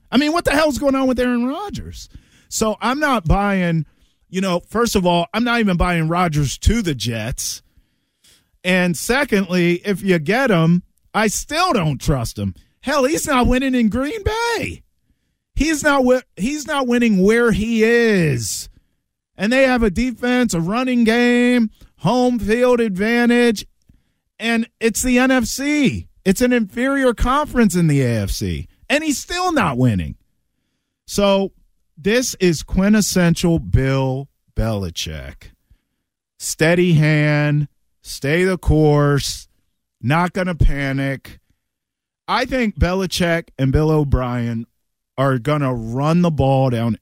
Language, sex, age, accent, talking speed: English, male, 40-59, American, 135 wpm